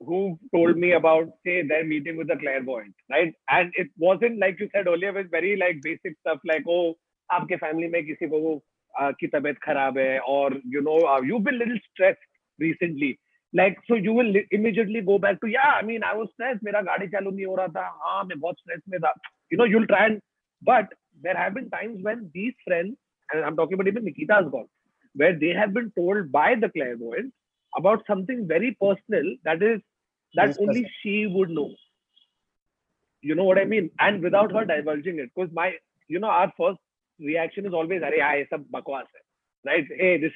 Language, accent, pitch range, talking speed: English, Indian, 160-210 Hz, 195 wpm